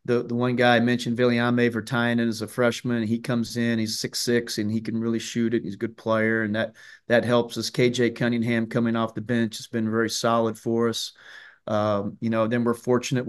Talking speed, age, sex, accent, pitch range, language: 220 wpm, 30-49, male, American, 110-120 Hz, English